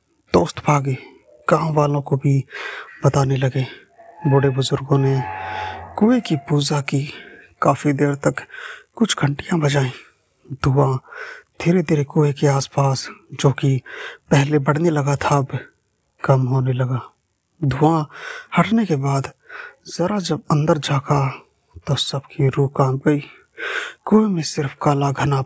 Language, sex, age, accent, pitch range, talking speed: Hindi, male, 20-39, native, 135-160 Hz, 130 wpm